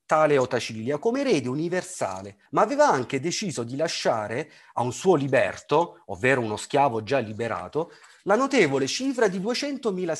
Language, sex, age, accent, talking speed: Italian, male, 40-59, native, 145 wpm